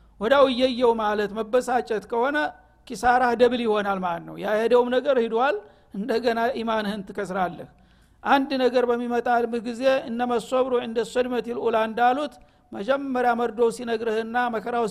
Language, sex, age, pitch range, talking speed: Amharic, male, 60-79, 210-250 Hz, 125 wpm